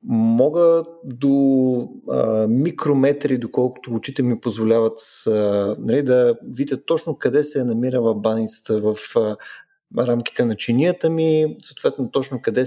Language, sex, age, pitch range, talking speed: Bulgarian, male, 20-39, 115-160 Hz, 110 wpm